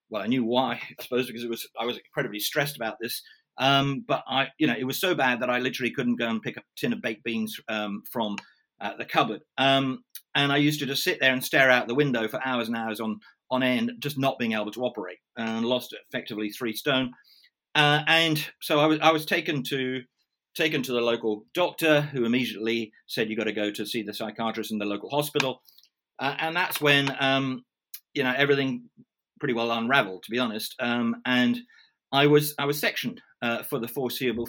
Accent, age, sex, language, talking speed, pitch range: British, 40-59, male, English, 220 wpm, 120-150 Hz